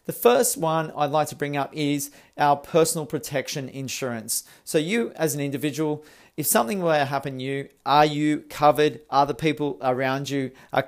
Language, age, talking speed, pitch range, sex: English, 40-59, 190 wpm, 135-155 Hz, male